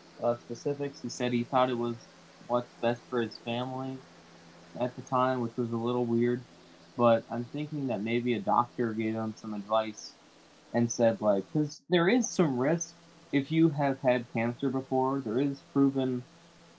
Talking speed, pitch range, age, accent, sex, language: 175 wpm, 105-130 Hz, 20-39, American, male, English